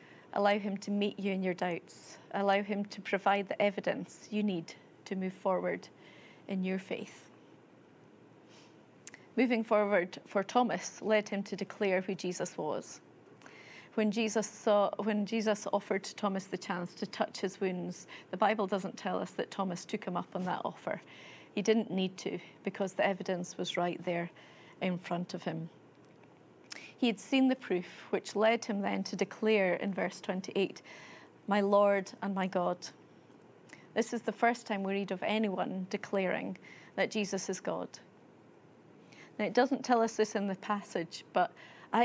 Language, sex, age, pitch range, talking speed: English, female, 30-49, 185-210 Hz, 165 wpm